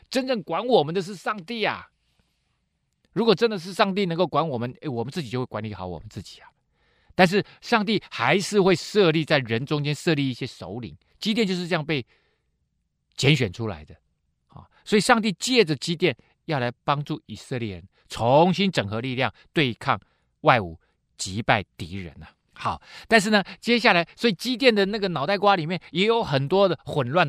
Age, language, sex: 50-69, Chinese, male